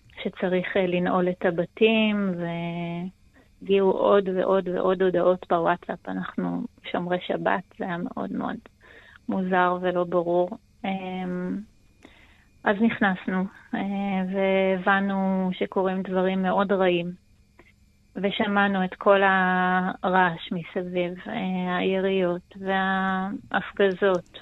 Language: Hebrew